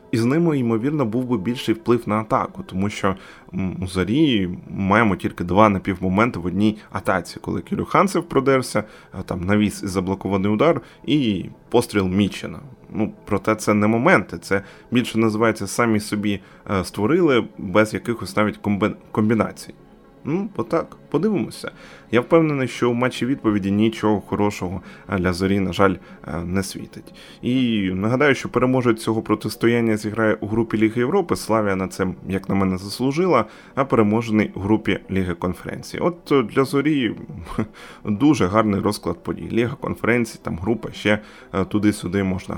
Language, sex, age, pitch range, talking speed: Ukrainian, male, 20-39, 100-130 Hz, 140 wpm